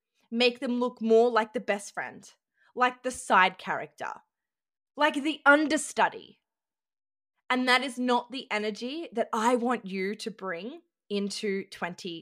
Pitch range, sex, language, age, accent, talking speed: 200-250 Hz, female, English, 20-39, Australian, 140 wpm